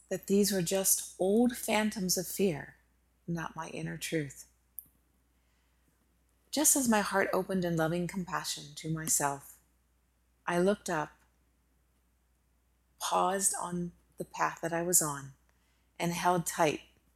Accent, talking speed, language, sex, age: American, 125 wpm, English, female, 30-49